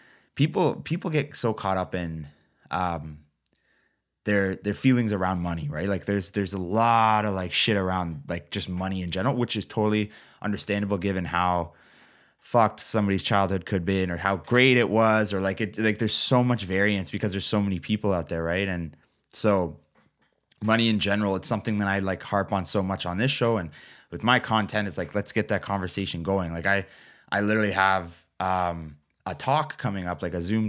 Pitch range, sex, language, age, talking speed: 90-110 Hz, male, English, 20-39, 200 wpm